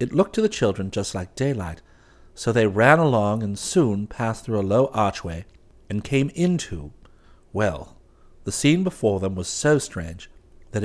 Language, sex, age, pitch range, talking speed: English, male, 60-79, 90-150 Hz, 170 wpm